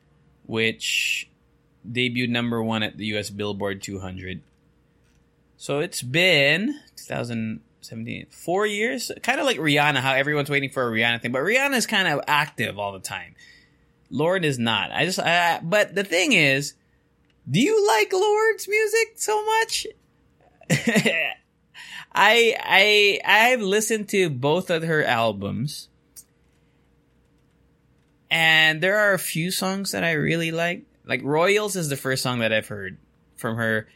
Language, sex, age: English, male, 20-39